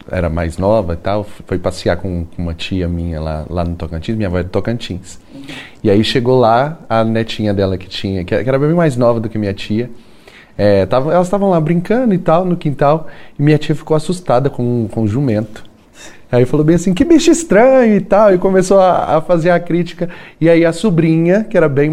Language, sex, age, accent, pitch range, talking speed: Portuguese, male, 20-39, Brazilian, 130-200 Hz, 215 wpm